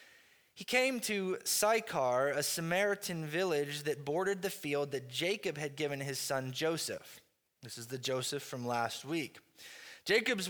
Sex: male